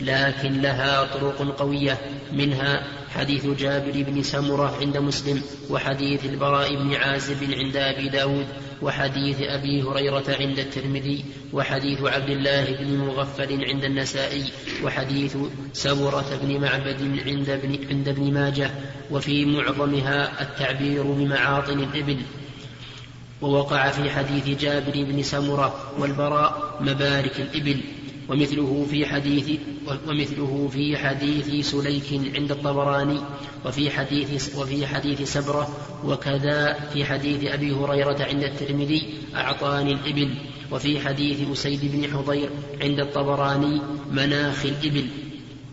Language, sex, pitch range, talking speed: Arabic, male, 140-145 Hz, 110 wpm